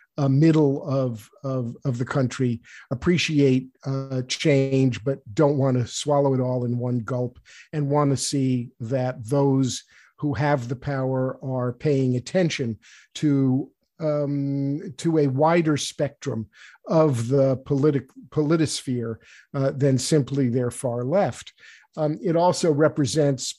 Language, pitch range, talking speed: English, 135-155 Hz, 135 wpm